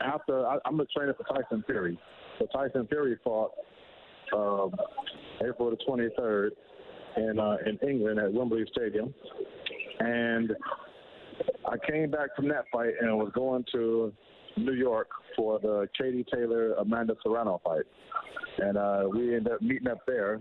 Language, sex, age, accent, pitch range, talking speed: English, male, 50-69, American, 115-140 Hz, 145 wpm